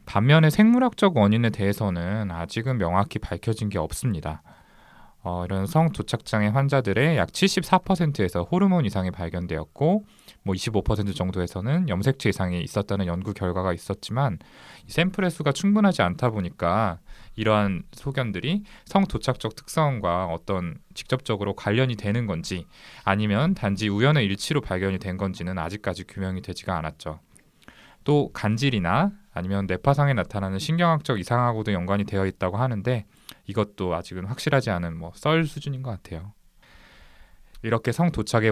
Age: 20-39